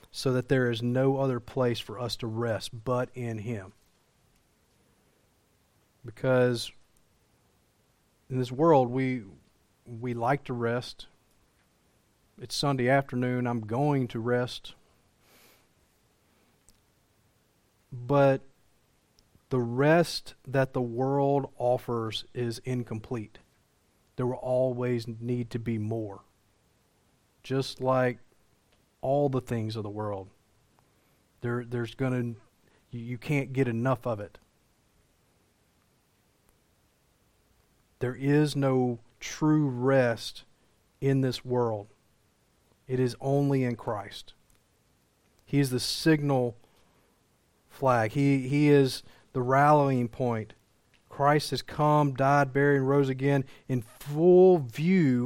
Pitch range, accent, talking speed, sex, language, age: 110-135 Hz, American, 105 wpm, male, English, 40-59